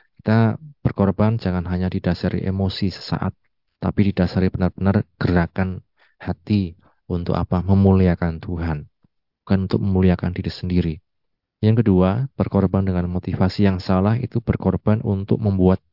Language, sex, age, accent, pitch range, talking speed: Indonesian, male, 30-49, native, 90-105 Hz, 120 wpm